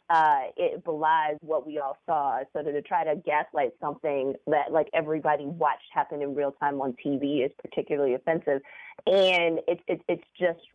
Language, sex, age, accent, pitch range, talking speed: English, female, 30-49, American, 145-170 Hz, 180 wpm